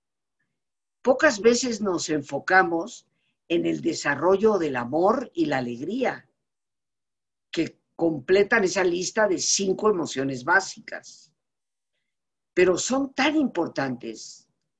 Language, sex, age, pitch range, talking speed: Spanish, female, 50-69, 145-210 Hz, 95 wpm